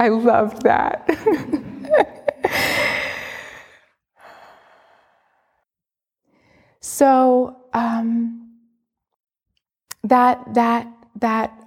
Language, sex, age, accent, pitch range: English, female, 30-49, American, 190-235 Hz